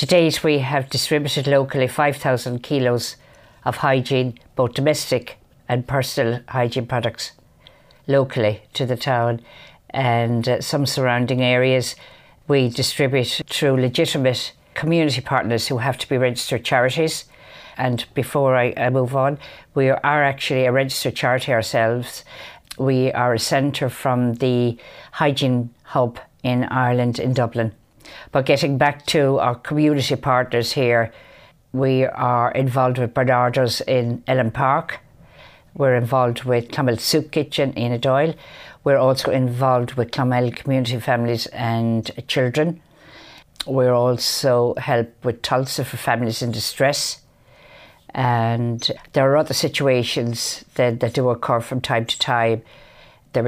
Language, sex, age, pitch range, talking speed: English, female, 50-69, 120-135 Hz, 130 wpm